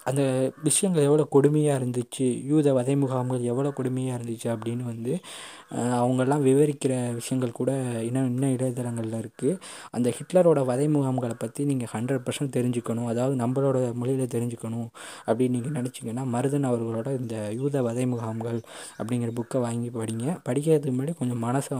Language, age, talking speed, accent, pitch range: Tamil, 20-39, 140 wpm, native, 115-135 Hz